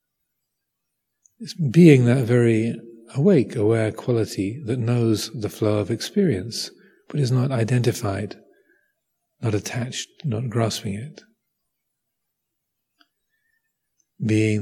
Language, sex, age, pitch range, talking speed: English, male, 40-59, 105-145 Hz, 95 wpm